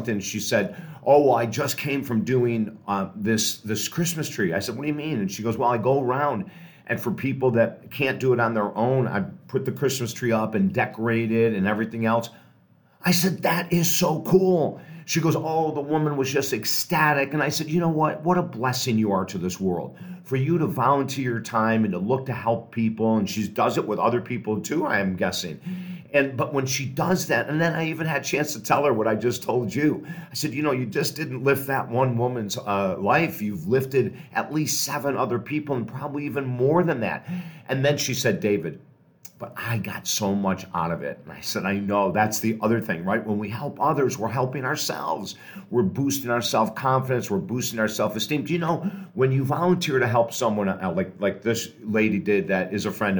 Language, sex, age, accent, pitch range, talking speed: English, male, 50-69, American, 110-155 Hz, 230 wpm